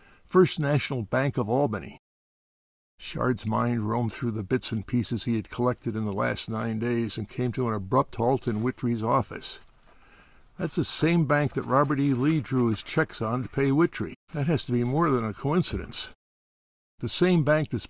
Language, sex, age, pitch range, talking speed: English, male, 60-79, 115-150 Hz, 190 wpm